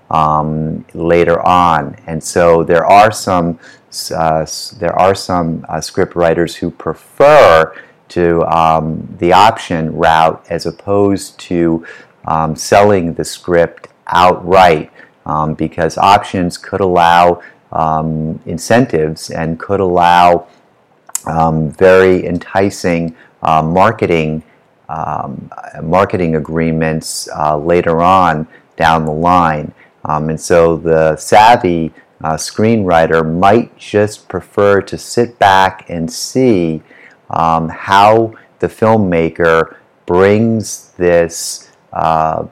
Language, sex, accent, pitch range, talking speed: English, male, American, 80-90 Hz, 105 wpm